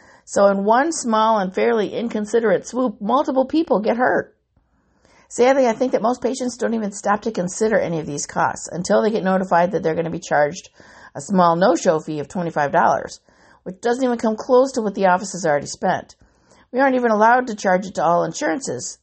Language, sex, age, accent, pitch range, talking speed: English, female, 50-69, American, 180-220 Hz, 205 wpm